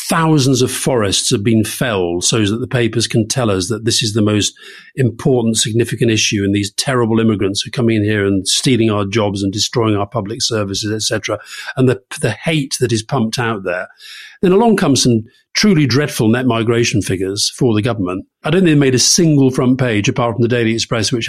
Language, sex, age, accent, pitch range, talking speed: English, male, 40-59, British, 105-135 Hz, 210 wpm